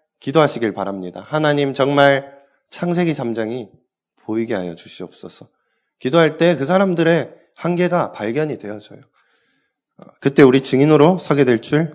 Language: Korean